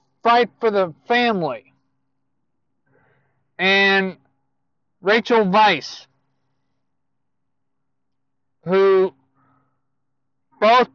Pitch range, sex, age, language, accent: 135-215 Hz, male, 50-69, English, American